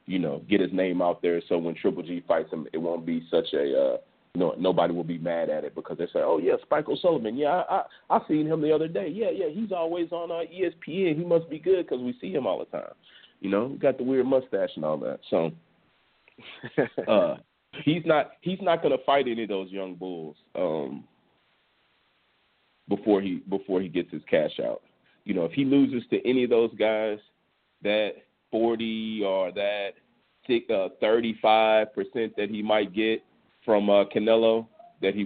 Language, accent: English, American